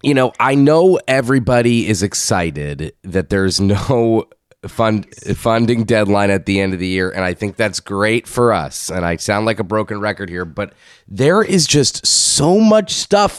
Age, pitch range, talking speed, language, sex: 20-39, 100-130 Hz, 180 wpm, English, male